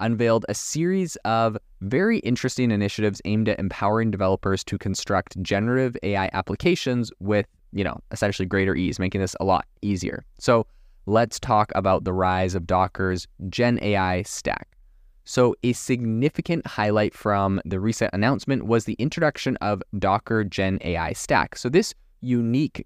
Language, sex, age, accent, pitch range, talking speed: English, male, 20-39, American, 95-120 Hz, 150 wpm